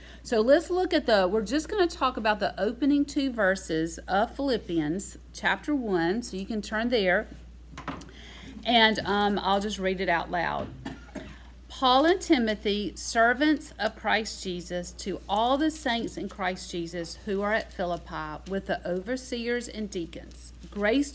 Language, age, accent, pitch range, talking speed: English, 40-59, American, 180-235 Hz, 160 wpm